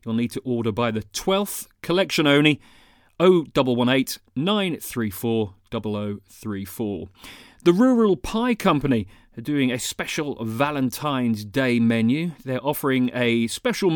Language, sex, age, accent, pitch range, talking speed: English, male, 40-59, British, 105-150 Hz, 115 wpm